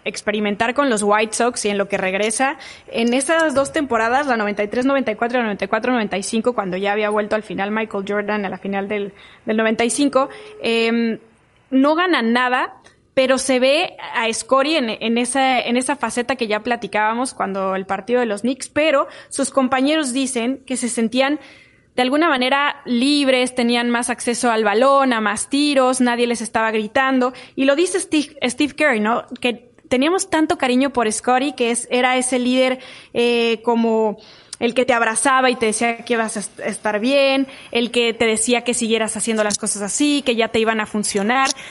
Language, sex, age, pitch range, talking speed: Spanish, female, 20-39, 225-275 Hz, 180 wpm